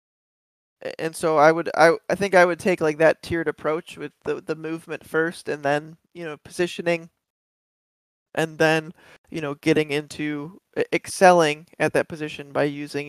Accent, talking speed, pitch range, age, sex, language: American, 165 wpm, 145-175 Hz, 20-39, male, English